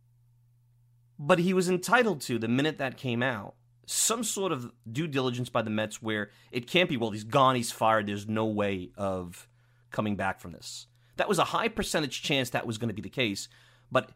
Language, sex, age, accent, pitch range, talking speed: English, male, 30-49, American, 115-135 Hz, 210 wpm